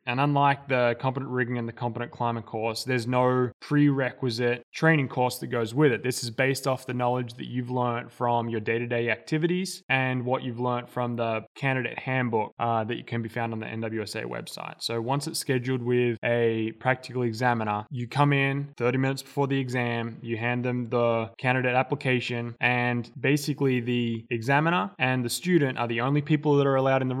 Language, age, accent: English, 10-29, Australian